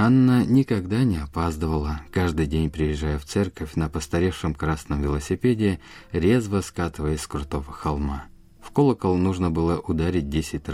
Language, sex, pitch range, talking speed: Russian, male, 75-100 Hz, 135 wpm